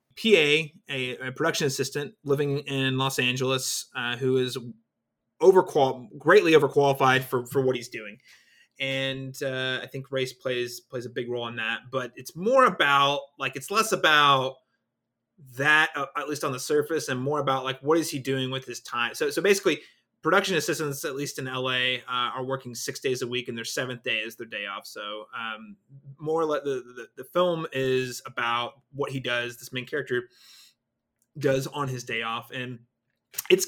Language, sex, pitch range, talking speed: English, male, 125-150 Hz, 185 wpm